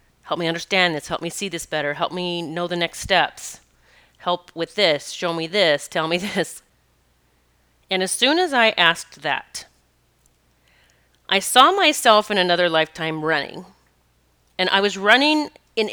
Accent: American